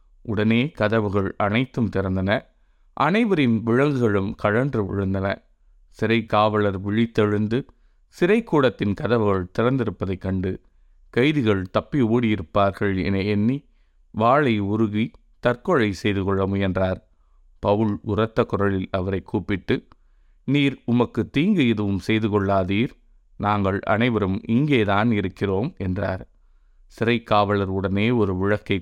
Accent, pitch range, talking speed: native, 95-115 Hz, 95 wpm